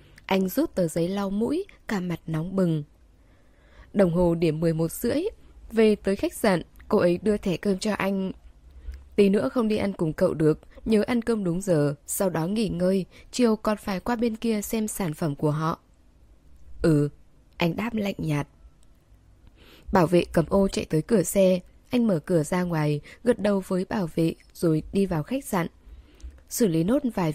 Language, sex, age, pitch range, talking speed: Vietnamese, female, 10-29, 160-220 Hz, 190 wpm